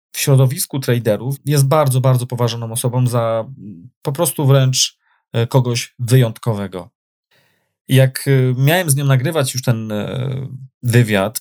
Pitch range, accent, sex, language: 110-130 Hz, native, male, Polish